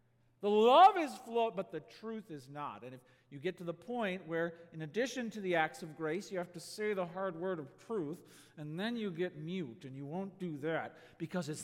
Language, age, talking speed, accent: English, 40-59, 230 wpm, American